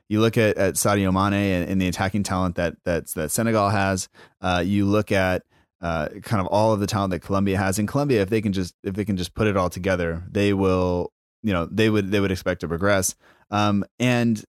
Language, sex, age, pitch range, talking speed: English, male, 30-49, 90-105 Hz, 235 wpm